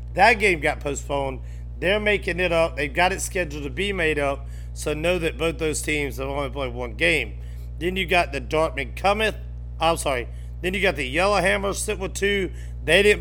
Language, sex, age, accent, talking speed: English, male, 40-59, American, 205 wpm